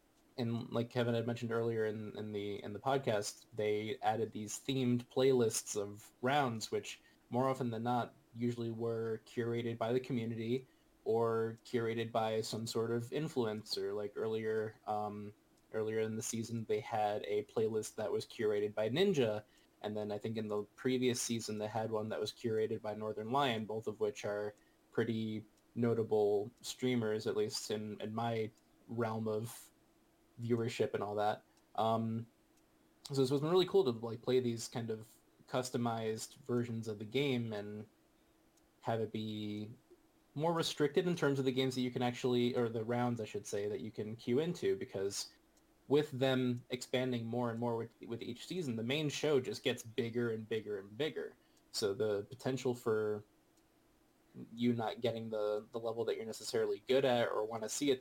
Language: English